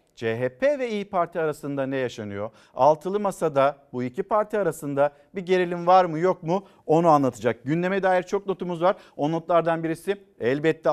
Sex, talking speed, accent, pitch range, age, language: male, 165 wpm, native, 130-180 Hz, 50-69, Turkish